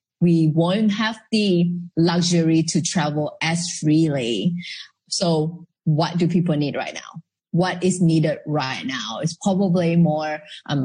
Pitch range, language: 155-190 Hz, English